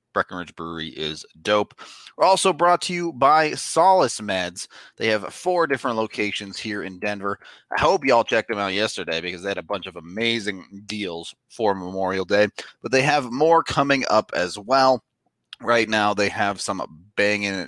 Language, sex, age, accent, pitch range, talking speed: English, male, 30-49, American, 100-125 Hz, 180 wpm